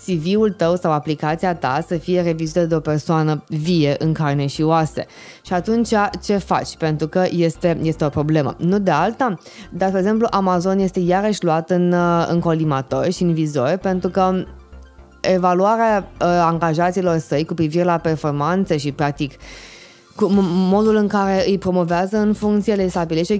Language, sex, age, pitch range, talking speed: Romanian, female, 20-39, 160-190 Hz, 160 wpm